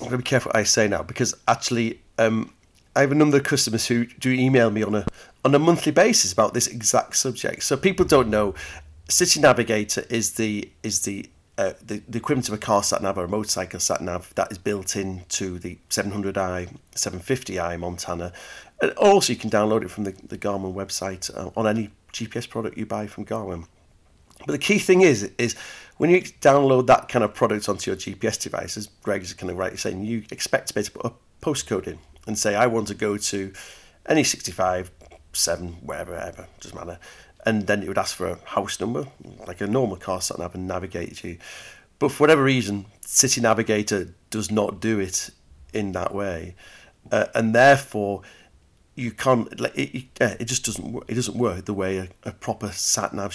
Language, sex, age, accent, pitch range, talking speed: English, male, 40-59, British, 95-120 Hz, 200 wpm